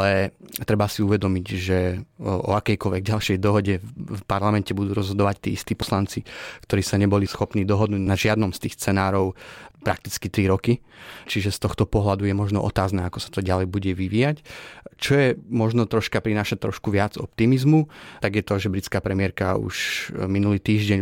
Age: 30-49